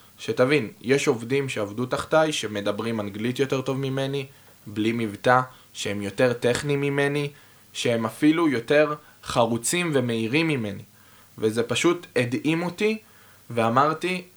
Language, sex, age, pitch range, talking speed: Hebrew, male, 20-39, 110-145 Hz, 115 wpm